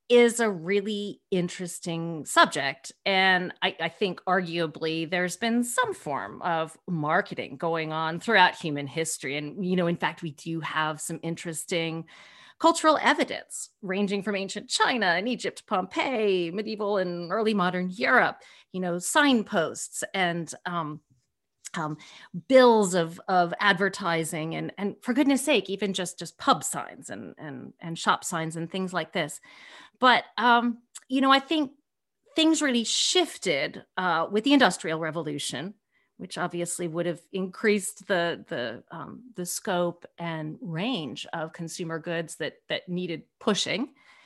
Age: 40-59